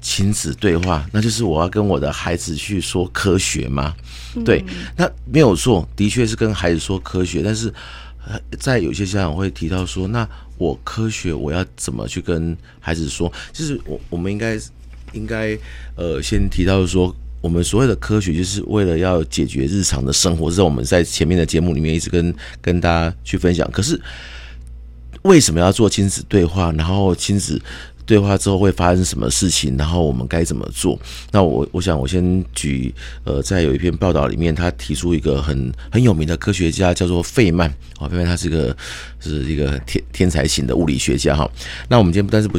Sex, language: male, Chinese